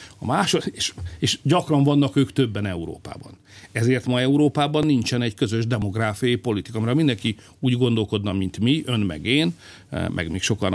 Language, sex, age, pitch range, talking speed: Hungarian, male, 60-79, 105-145 Hz, 165 wpm